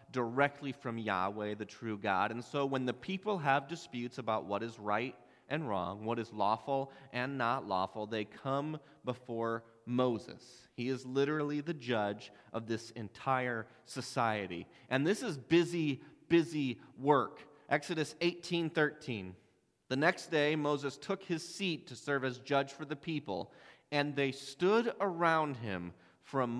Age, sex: 30-49, male